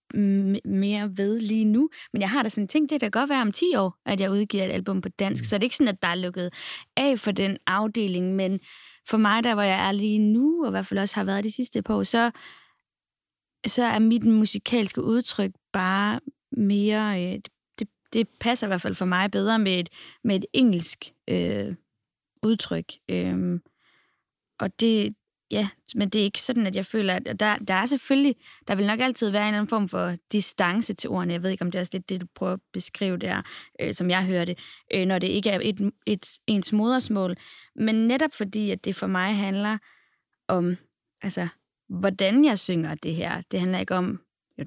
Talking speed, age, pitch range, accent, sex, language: 220 wpm, 20-39, 185-220 Hz, native, female, Danish